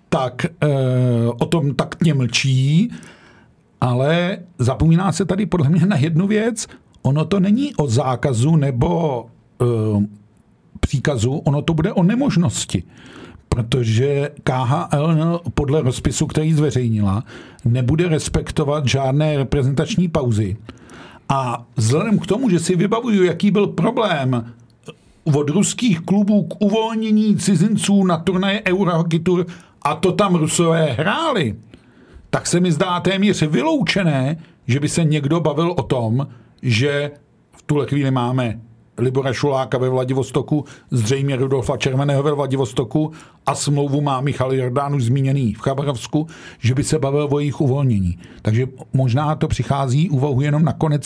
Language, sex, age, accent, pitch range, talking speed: Czech, male, 50-69, native, 130-170 Hz, 130 wpm